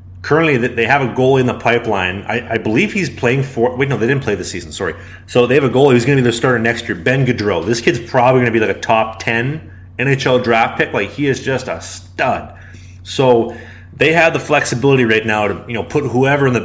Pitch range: 105-125 Hz